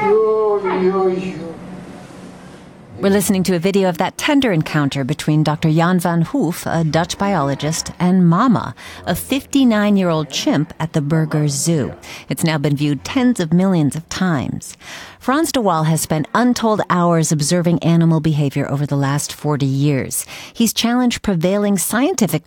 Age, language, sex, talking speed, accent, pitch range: 40-59, English, female, 145 wpm, American, 150-195 Hz